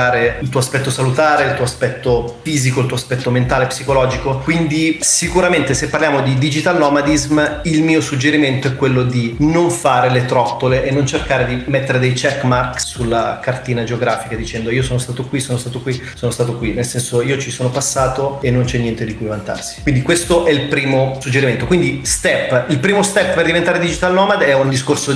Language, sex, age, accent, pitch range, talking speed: Italian, male, 30-49, native, 125-145 Hz, 200 wpm